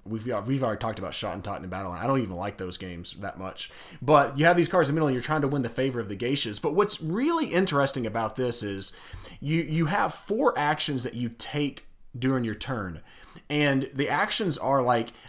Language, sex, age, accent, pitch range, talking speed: English, male, 30-49, American, 115-170 Hz, 235 wpm